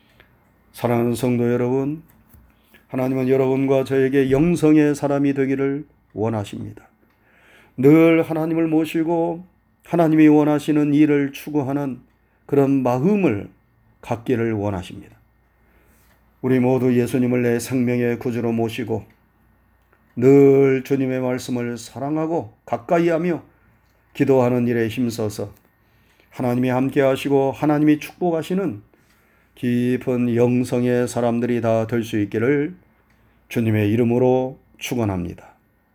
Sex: male